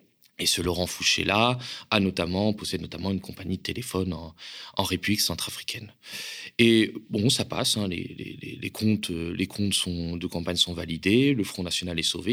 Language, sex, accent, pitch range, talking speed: French, male, French, 90-110 Hz, 180 wpm